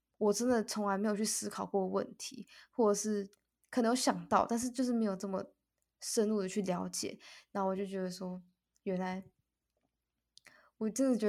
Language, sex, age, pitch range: Chinese, female, 10-29, 190-215 Hz